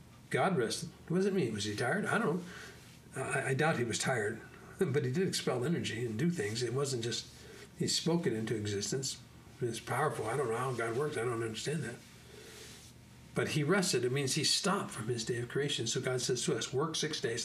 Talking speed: 225 wpm